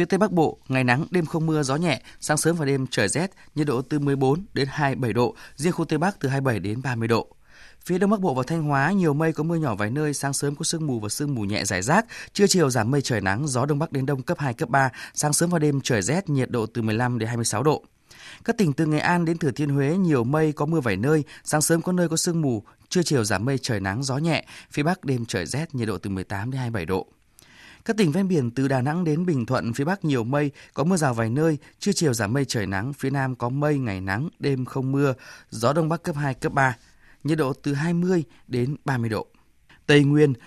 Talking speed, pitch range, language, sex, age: 265 wpm, 130-165 Hz, Vietnamese, male, 20-39